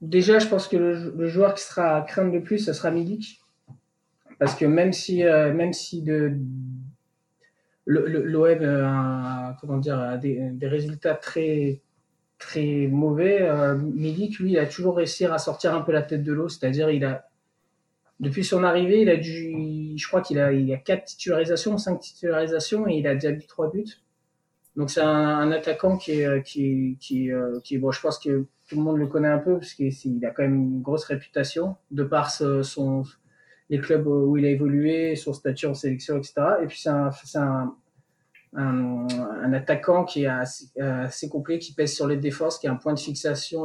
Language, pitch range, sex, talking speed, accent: French, 140-170 Hz, male, 185 wpm, French